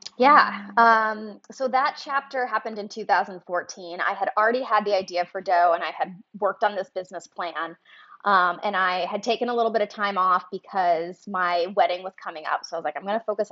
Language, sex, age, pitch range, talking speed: English, female, 20-39, 180-215 Hz, 220 wpm